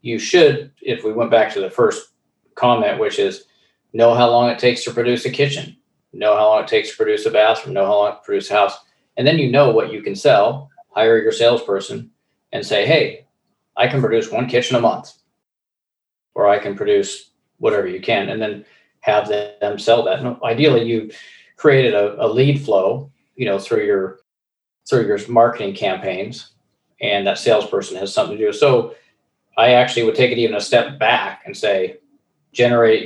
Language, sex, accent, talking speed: English, male, American, 200 wpm